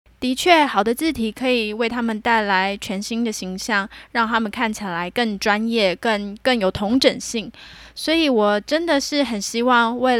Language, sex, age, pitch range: Chinese, female, 10-29, 210-250 Hz